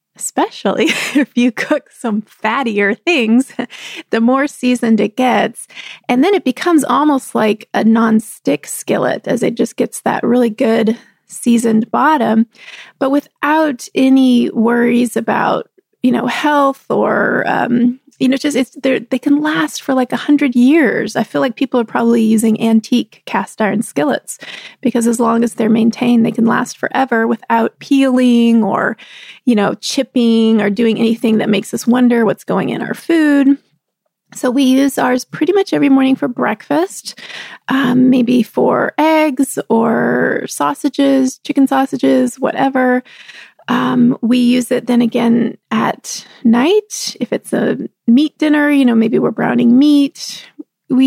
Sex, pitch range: female, 230-285 Hz